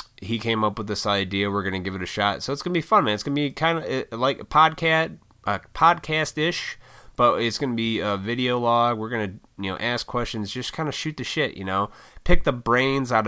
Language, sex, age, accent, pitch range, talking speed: English, male, 30-49, American, 95-125 Hz, 260 wpm